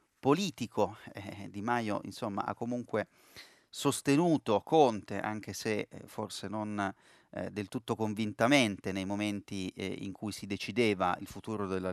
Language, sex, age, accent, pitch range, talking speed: Italian, male, 30-49, native, 100-125 Hz, 140 wpm